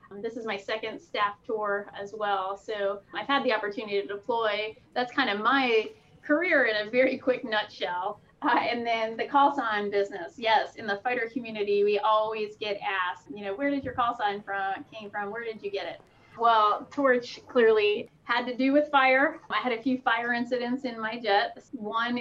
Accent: American